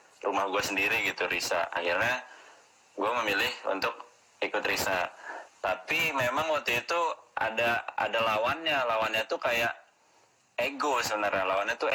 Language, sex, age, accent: Indonesian, male, 20-39, native